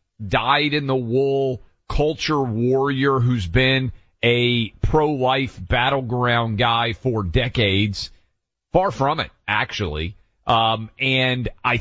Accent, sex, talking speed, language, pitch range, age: American, male, 105 wpm, English, 105-135 Hz, 40-59